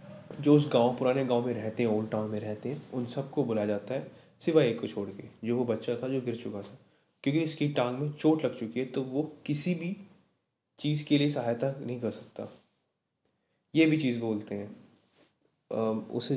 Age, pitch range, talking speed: 20-39, 110-145 Hz, 205 wpm